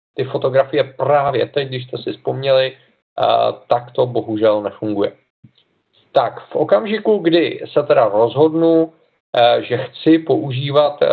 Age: 50-69